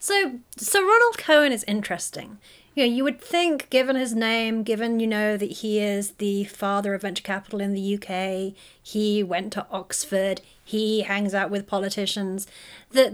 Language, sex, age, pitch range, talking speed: English, female, 30-49, 195-245 Hz, 175 wpm